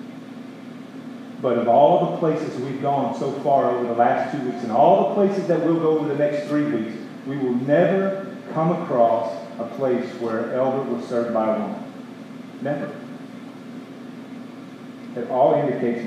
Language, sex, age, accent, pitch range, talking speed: English, male, 40-59, American, 140-225 Hz, 165 wpm